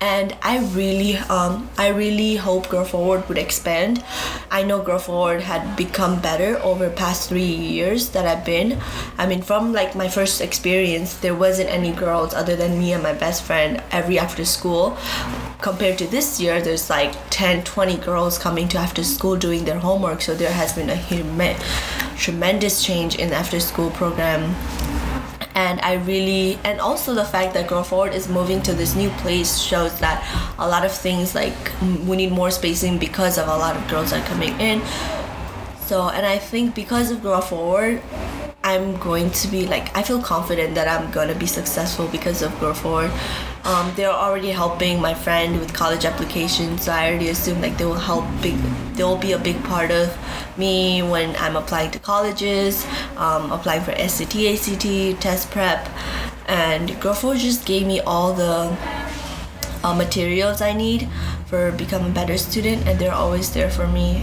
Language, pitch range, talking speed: English, 170-195 Hz, 180 wpm